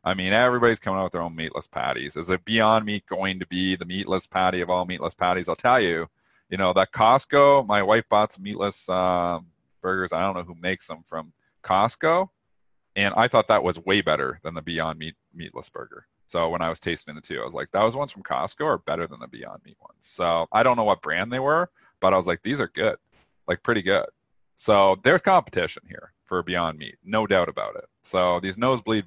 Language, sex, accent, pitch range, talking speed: English, male, American, 90-115 Hz, 235 wpm